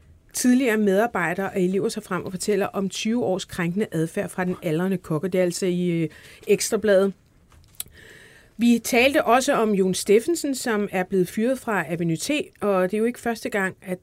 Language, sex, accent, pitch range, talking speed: Danish, female, native, 175-225 Hz, 165 wpm